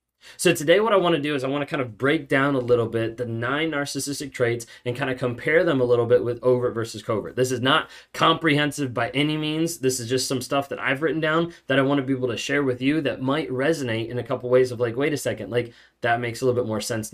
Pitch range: 125-145 Hz